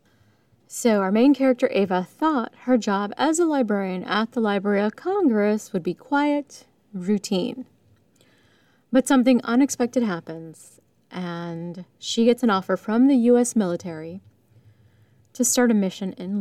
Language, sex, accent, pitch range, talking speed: English, female, American, 170-240 Hz, 140 wpm